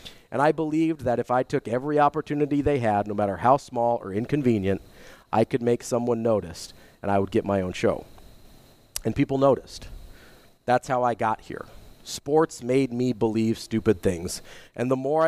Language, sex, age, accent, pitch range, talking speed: English, male, 40-59, American, 105-135 Hz, 180 wpm